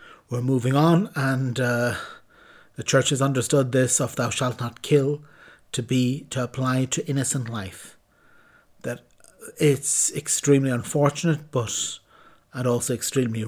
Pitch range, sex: 120-140 Hz, male